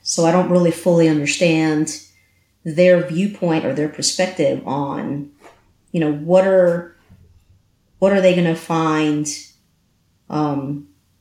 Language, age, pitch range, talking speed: English, 40-59, 145-180 Hz, 125 wpm